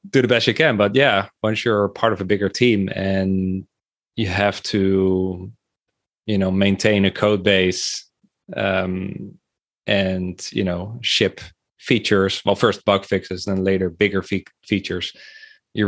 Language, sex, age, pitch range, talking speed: English, male, 20-39, 95-110 Hz, 145 wpm